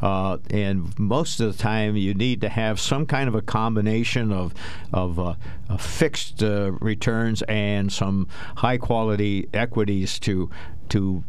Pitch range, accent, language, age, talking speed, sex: 95-120 Hz, American, English, 60-79, 145 wpm, male